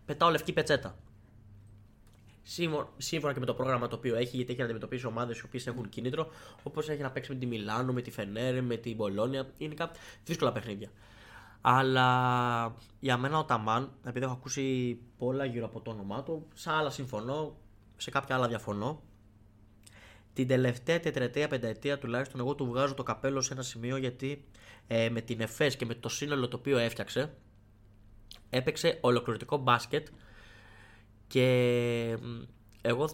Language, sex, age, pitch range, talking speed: Greek, male, 20-39, 105-135 Hz, 155 wpm